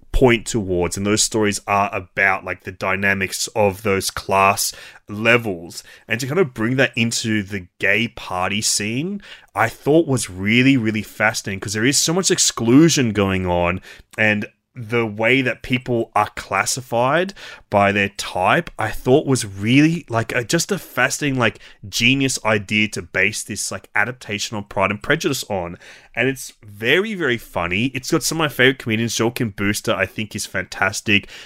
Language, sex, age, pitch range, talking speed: English, male, 20-39, 100-125 Hz, 170 wpm